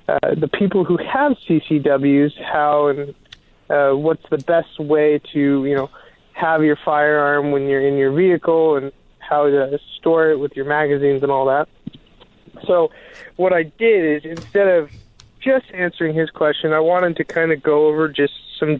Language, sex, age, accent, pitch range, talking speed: English, male, 20-39, American, 140-160 Hz, 175 wpm